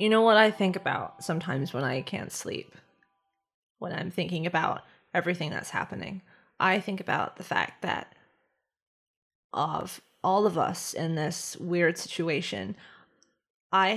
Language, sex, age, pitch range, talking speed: English, female, 20-39, 170-200 Hz, 140 wpm